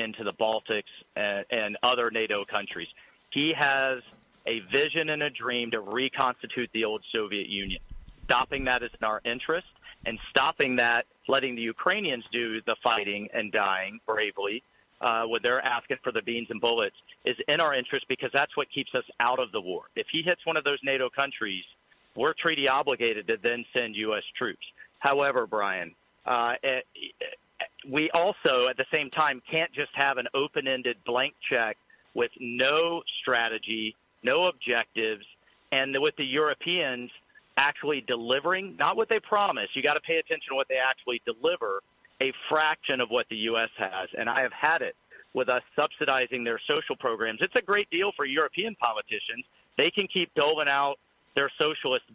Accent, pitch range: American, 115-155 Hz